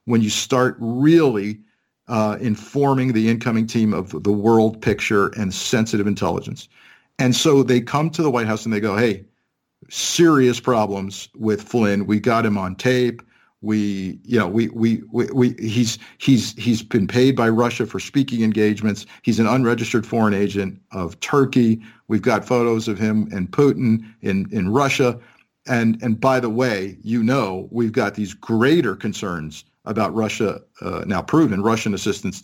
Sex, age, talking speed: male, 50-69, 165 wpm